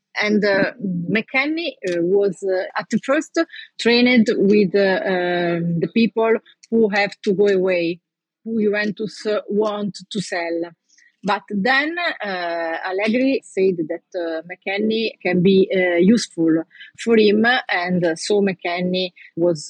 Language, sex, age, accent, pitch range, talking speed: English, female, 30-49, Italian, 175-210 Hz, 135 wpm